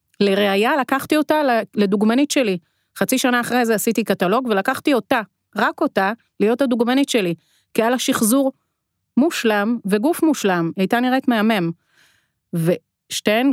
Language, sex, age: Hebrew, female, 30-49